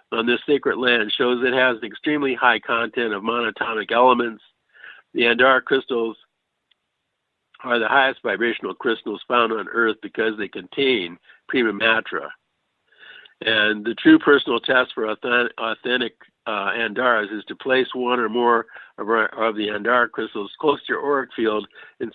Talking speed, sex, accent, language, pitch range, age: 155 wpm, male, American, English, 115-135 Hz, 60-79